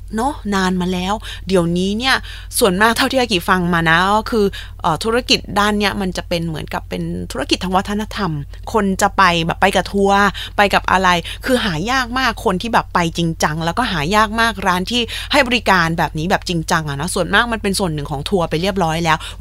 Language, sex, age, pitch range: Thai, female, 20-39, 175-265 Hz